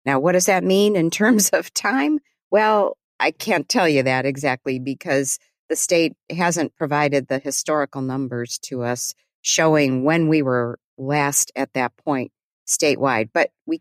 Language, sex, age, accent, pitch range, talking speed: English, female, 50-69, American, 130-170 Hz, 160 wpm